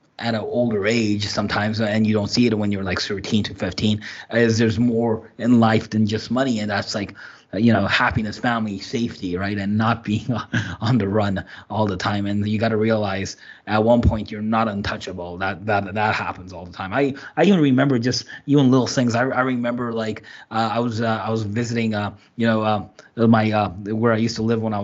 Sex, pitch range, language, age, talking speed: male, 110-140 Hz, English, 30-49, 220 wpm